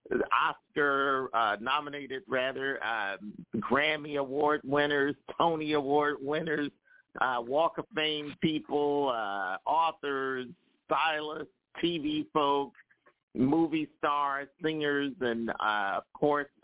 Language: English